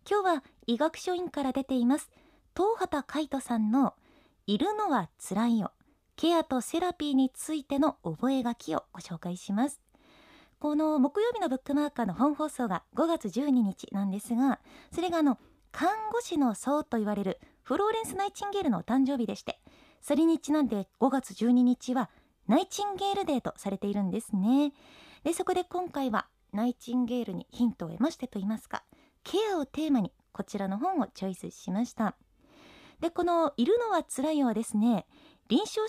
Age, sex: 20-39, female